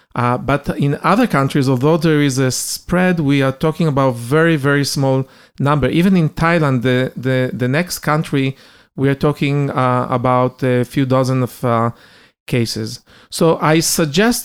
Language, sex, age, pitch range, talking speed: Hebrew, male, 40-59, 130-155 Hz, 165 wpm